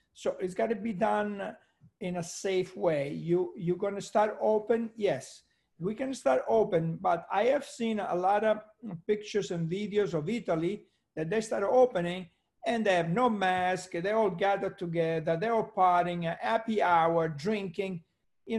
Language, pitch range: English, 165-210 Hz